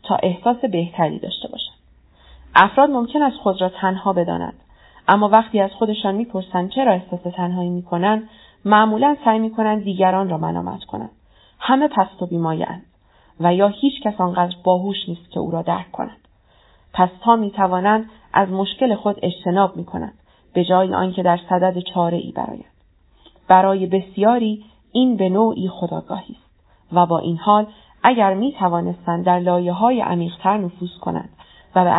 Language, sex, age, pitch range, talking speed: Persian, female, 30-49, 175-210 Hz, 150 wpm